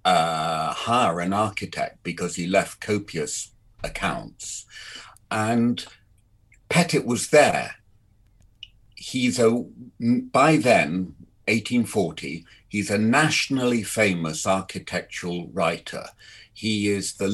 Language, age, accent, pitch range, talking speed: English, 50-69, British, 95-120 Hz, 95 wpm